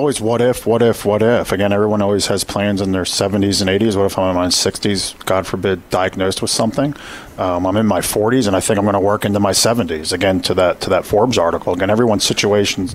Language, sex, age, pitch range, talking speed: English, male, 40-59, 100-125 Hz, 250 wpm